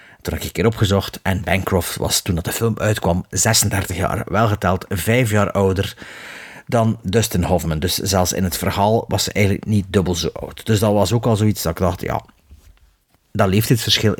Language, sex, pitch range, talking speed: Dutch, male, 95-115 Hz, 200 wpm